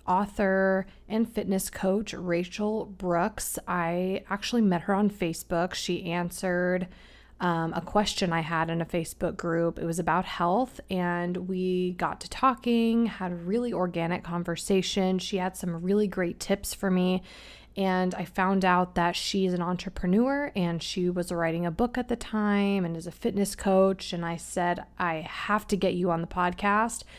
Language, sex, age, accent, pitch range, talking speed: English, female, 20-39, American, 175-200 Hz, 170 wpm